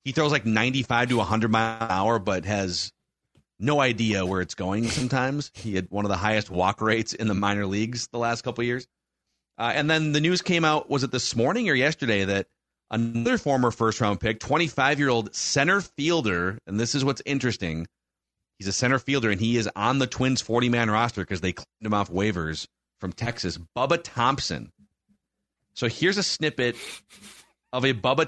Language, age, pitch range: English, 40-59, 105-140 Hz